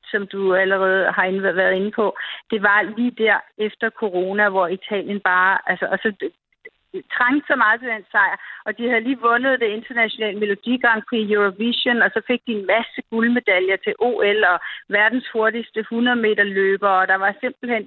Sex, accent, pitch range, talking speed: female, native, 205-245 Hz, 175 wpm